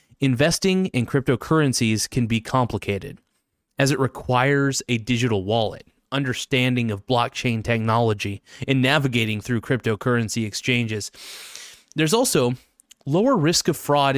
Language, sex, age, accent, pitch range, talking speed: English, male, 30-49, American, 115-140 Hz, 115 wpm